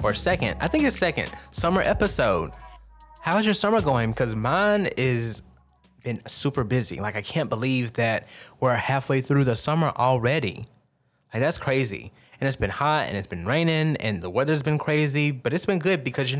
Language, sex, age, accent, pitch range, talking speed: English, male, 20-39, American, 115-145 Hz, 185 wpm